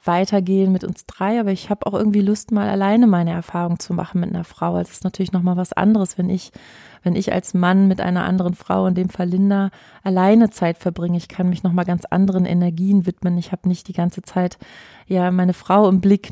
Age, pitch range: 30-49, 175-200 Hz